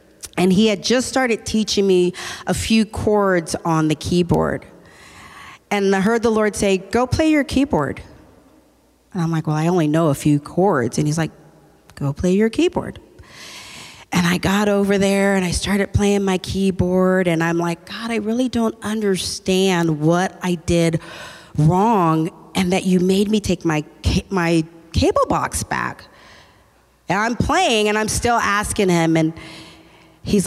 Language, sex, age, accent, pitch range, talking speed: English, female, 40-59, American, 165-210 Hz, 165 wpm